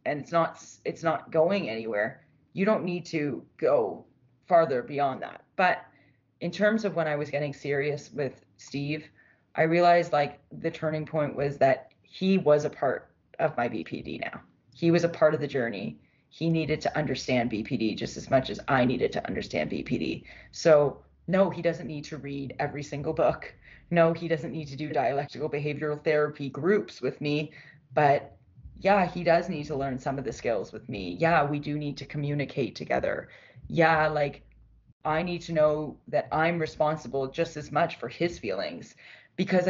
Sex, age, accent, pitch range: female, 30-49, American, 140-170 Hz